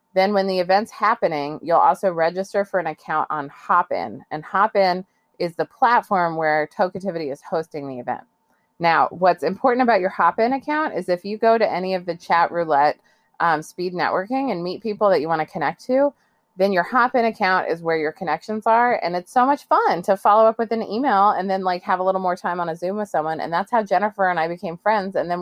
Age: 30-49